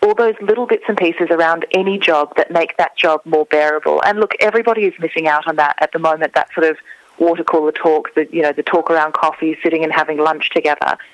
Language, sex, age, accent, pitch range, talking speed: English, female, 30-49, Australian, 165-200 Hz, 235 wpm